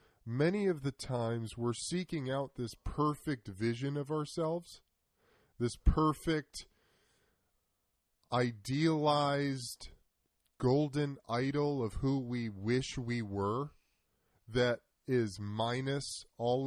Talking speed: 95 wpm